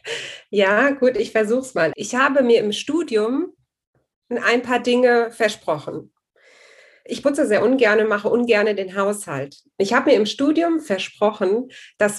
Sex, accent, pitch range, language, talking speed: female, German, 205-255 Hz, German, 145 wpm